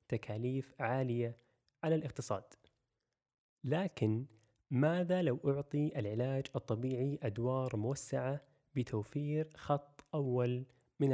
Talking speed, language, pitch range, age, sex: 85 wpm, Arabic, 115-140 Hz, 20-39, male